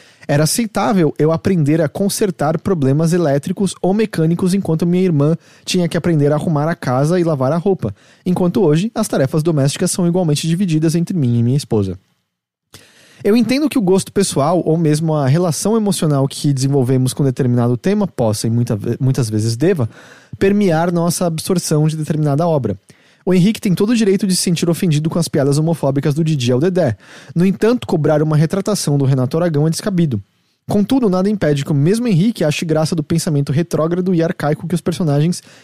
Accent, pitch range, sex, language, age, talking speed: Brazilian, 140-185 Hz, male, Portuguese, 20-39, 185 wpm